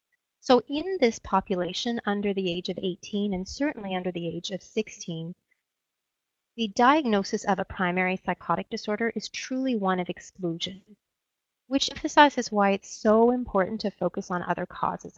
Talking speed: 155 wpm